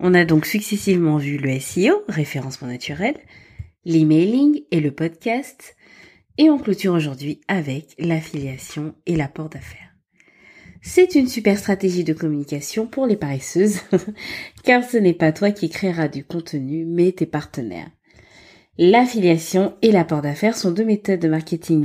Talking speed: 145 wpm